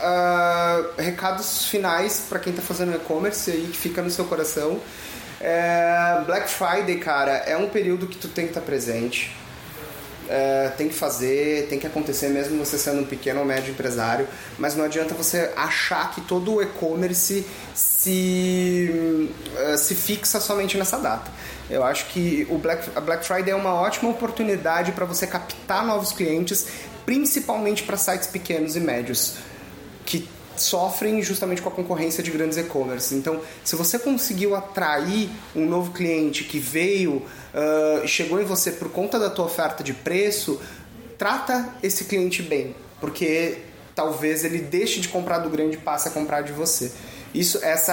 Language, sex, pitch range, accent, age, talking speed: Portuguese, male, 155-195 Hz, Brazilian, 30-49, 165 wpm